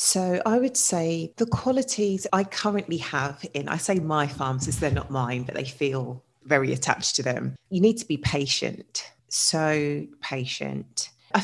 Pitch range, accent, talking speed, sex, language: 135-155 Hz, British, 170 wpm, female, English